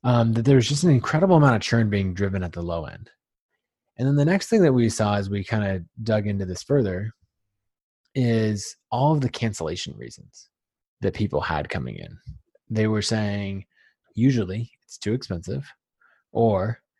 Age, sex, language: 20-39, male, English